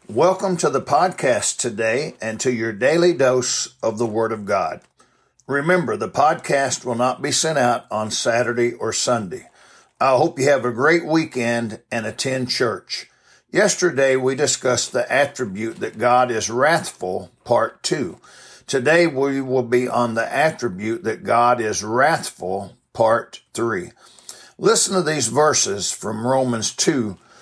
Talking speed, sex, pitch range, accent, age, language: 150 wpm, male, 120-145 Hz, American, 60-79, English